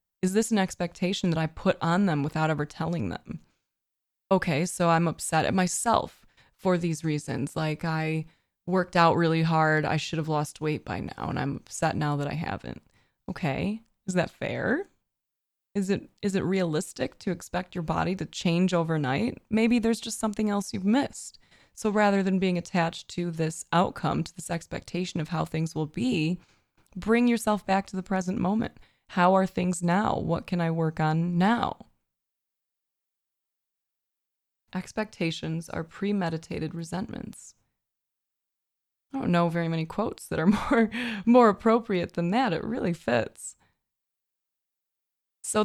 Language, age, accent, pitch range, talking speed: English, 20-39, American, 160-210 Hz, 155 wpm